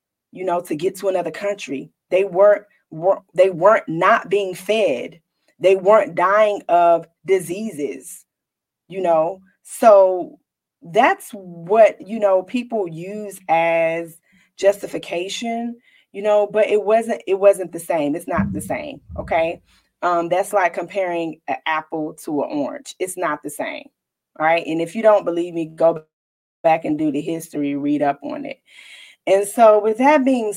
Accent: American